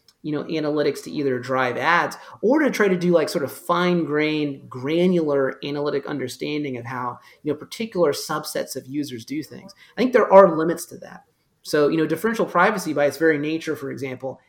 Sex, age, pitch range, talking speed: male, 30-49, 140-180 Hz, 200 wpm